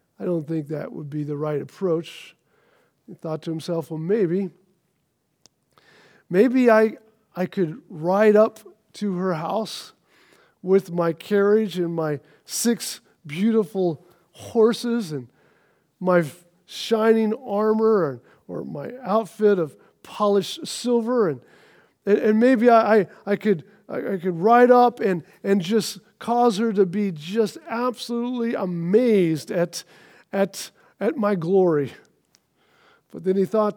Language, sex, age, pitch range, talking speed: English, male, 40-59, 165-210 Hz, 135 wpm